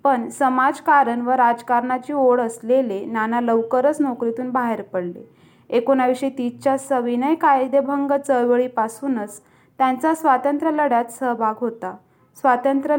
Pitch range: 235-275 Hz